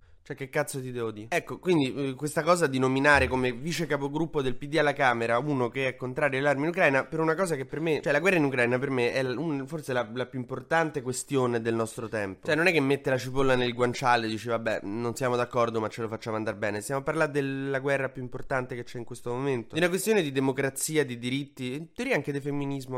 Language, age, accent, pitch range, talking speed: Italian, 20-39, native, 120-155 Hz, 245 wpm